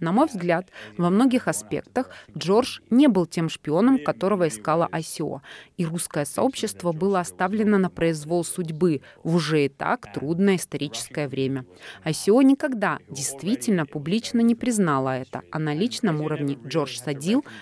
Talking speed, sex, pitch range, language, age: 145 wpm, female, 155-220 Hz, Russian, 20-39